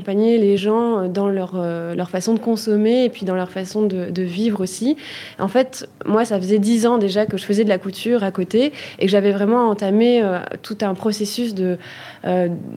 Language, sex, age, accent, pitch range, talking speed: French, female, 20-39, French, 190-225 Hz, 215 wpm